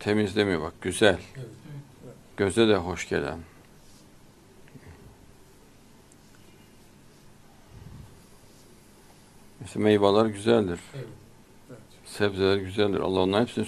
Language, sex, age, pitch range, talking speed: Turkish, male, 60-79, 95-125 Hz, 65 wpm